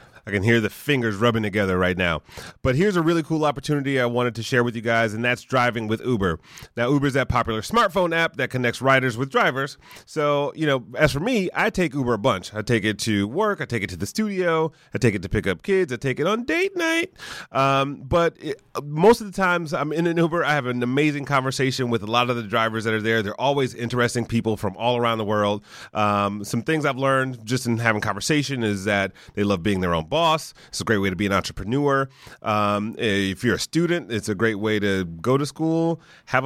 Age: 30-49